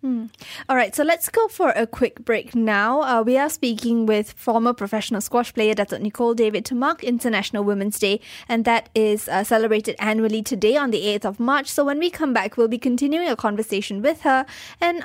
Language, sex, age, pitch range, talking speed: English, female, 10-29, 215-260 Hz, 205 wpm